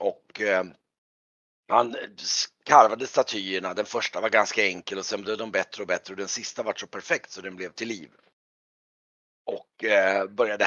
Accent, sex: native, male